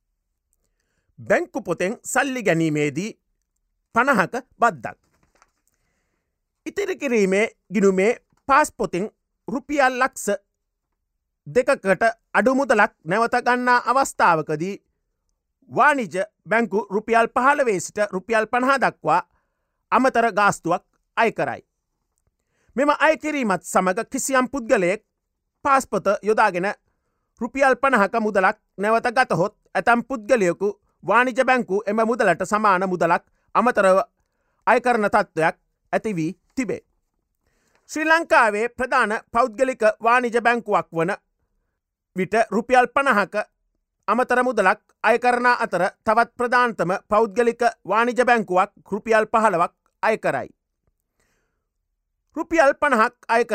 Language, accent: Japanese, Indian